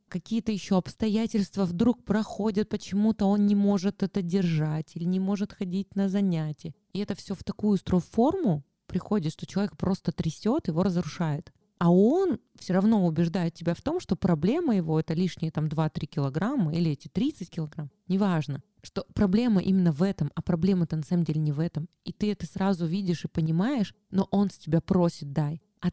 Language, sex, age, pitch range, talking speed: Russian, female, 20-39, 160-195 Hz, 185 wpm